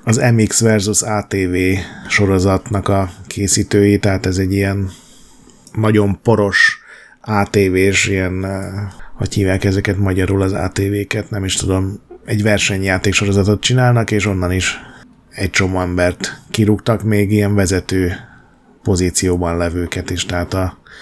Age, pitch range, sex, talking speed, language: 30-49, 95-110 Hz, male, 125 wpm, Hungarian